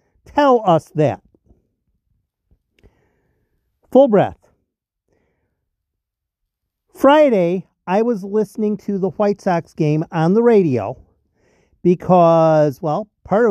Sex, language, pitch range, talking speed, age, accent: male, English, 155-210 Hz, 90 wpm, 50-69, American